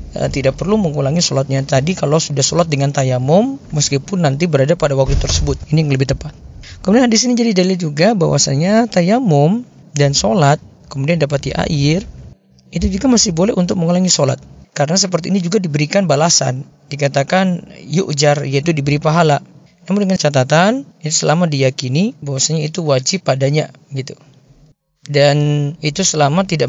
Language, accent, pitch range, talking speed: Indonesian, native, 145-190 Hz, 150 wpm